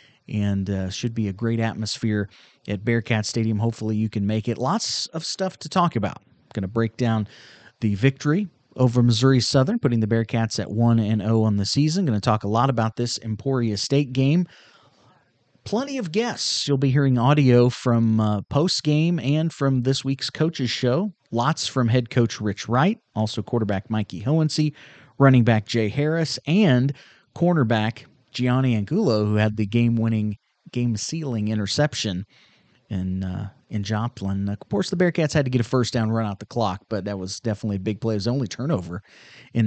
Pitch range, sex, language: 110-140 Hz, male, English